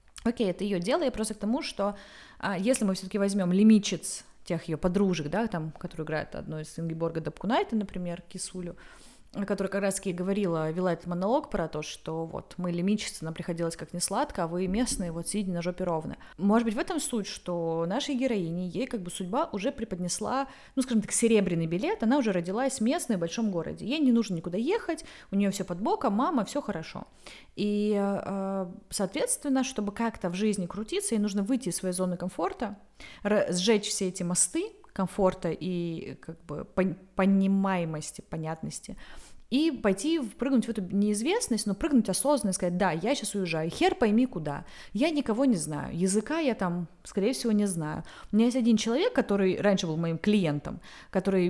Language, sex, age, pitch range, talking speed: Russian, female, 20-39, 180-230 Hz, 185 wpm